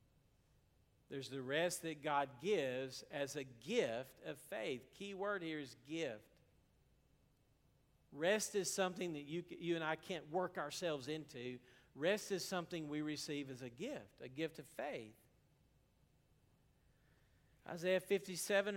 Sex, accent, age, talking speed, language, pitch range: male, American, 50-69, 135 wpm, English, 145-195 Hz